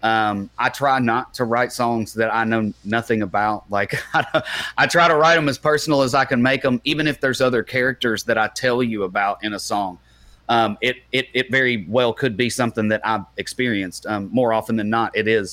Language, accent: English, American